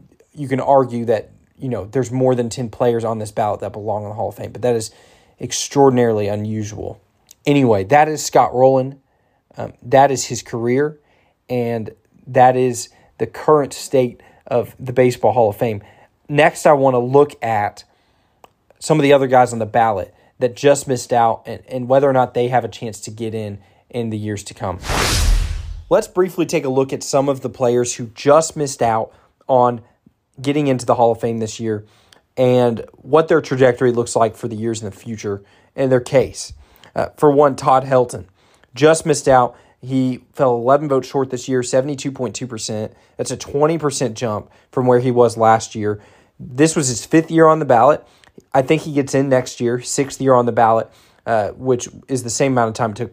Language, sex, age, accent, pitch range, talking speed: English, male, 20-39, American, 110-135 Hz, 200 wpm